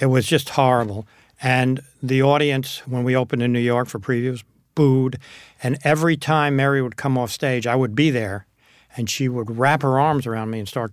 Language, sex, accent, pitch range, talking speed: English, male, American, 120-140 Hz, 210 wpm